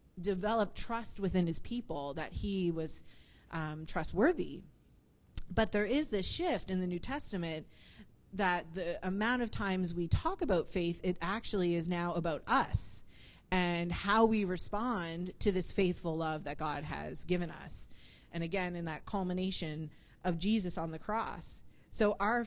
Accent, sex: American, female